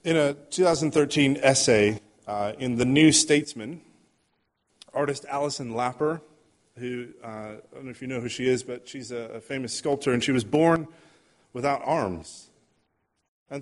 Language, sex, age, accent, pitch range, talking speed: English, male, 30-49, American, 125-150 Hz, 160 wpm